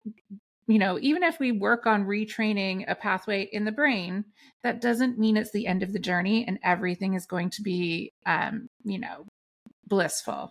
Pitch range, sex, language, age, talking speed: 190-225 Hz, female, English, 30-49, 185 wpm